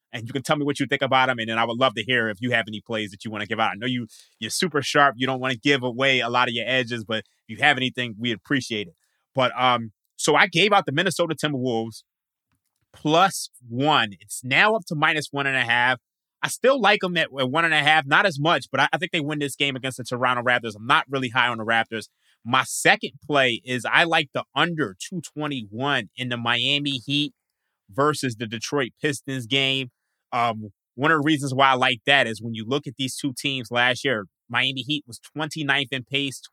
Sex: male